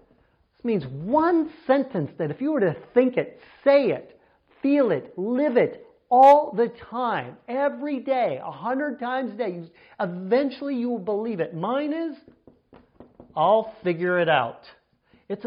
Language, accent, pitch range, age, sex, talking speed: English, American, 170-235 Hz, 50-69, male, 145 wpm